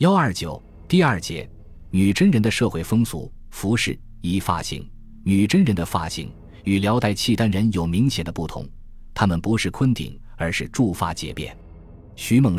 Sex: male